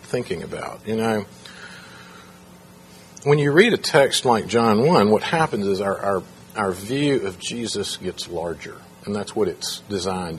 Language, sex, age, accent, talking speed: English, male, 40-59, American, 160 wpm